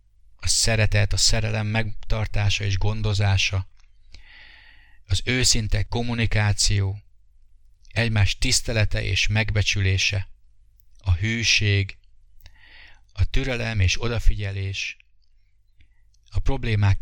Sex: male